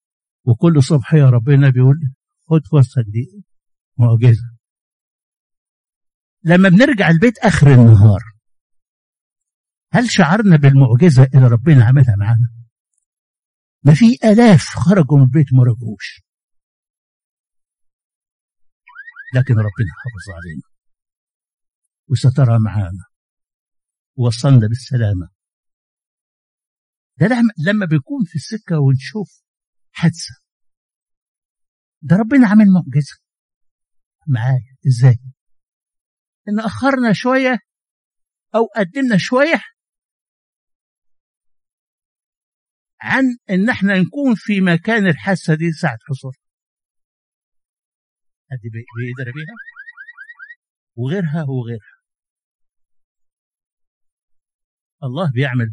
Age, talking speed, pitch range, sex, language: 60-79, 80 wpm, 120-200 Hz, male, Arabic